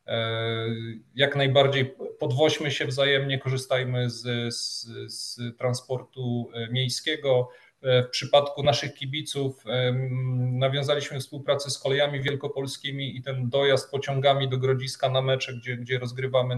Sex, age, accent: male, 30-49, native